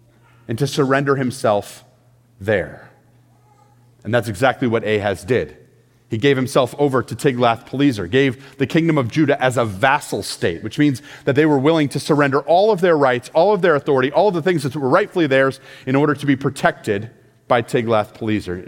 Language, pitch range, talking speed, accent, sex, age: English, 120-160 Hz, 185 wpm, American, male, 40-59